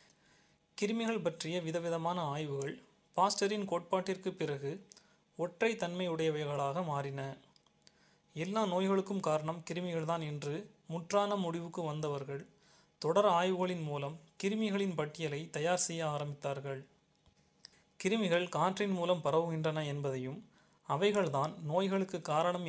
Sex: male